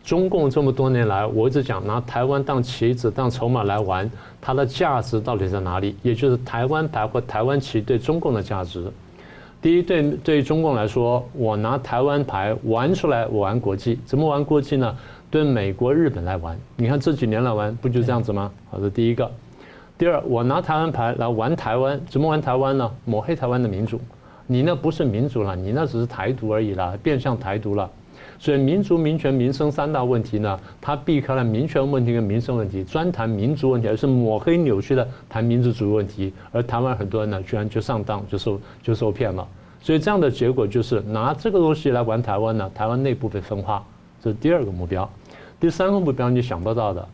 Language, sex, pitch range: Chinese, male, 110-140 Hz